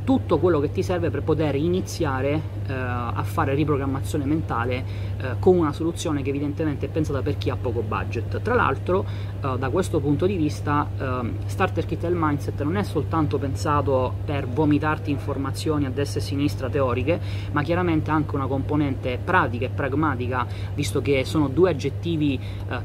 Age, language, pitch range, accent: 20-39, Italian, 100-140 Hz, native